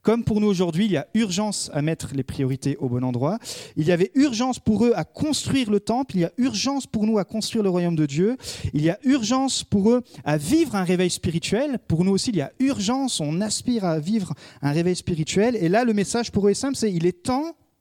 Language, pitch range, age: French, 160-230 Hz, 40-59